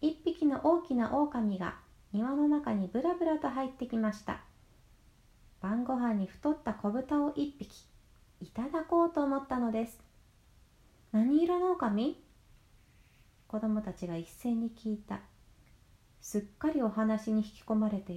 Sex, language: female, Japanese